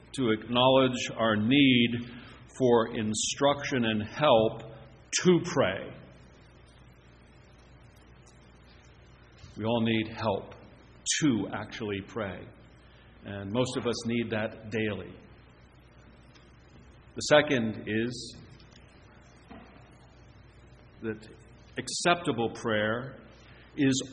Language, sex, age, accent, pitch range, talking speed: English, male, 50-69, American, 110-140 Hz, 75 wpm